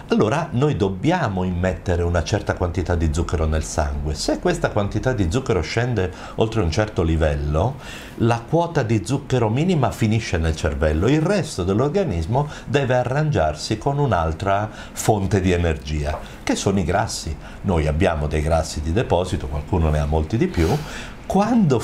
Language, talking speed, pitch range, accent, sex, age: Italian, 155 wpm, 85-120 Hz, native, male, 50-69